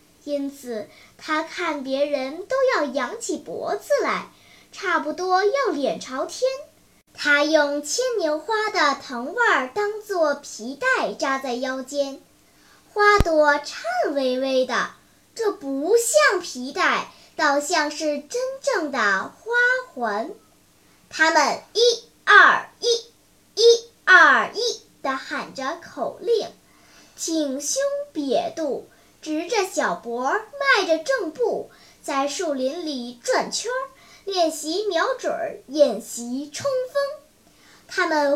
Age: 10-29